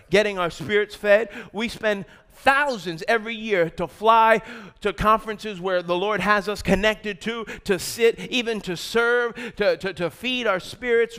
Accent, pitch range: American, 195-245 Hz